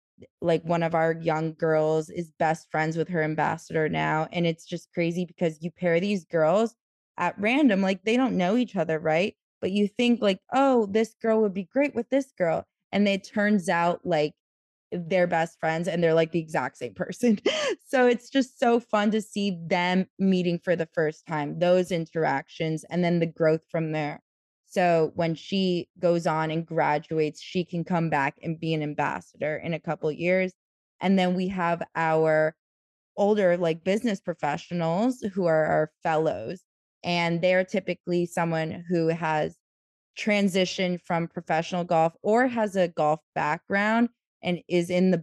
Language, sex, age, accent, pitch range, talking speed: English, female, 20-39, American, 160-185 Hz, 175 wpm